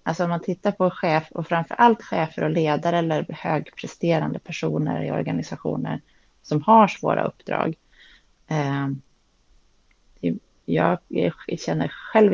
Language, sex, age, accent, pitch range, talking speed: Swedish, female, 30-49, native, 155-190 Hz, 110 wpm